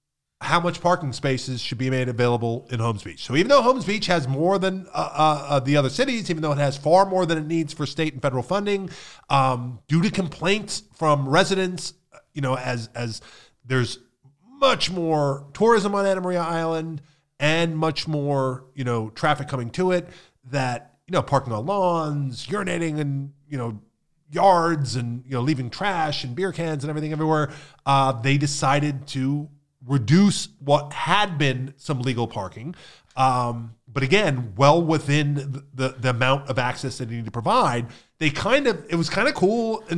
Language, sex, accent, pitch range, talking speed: English, male, American, 130-170 Hz, 185 wpm